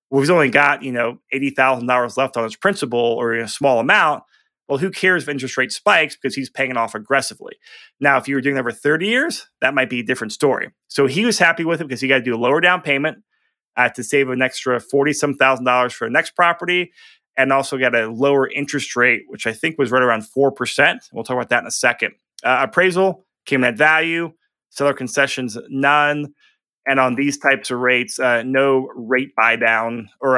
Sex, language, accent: male, English, American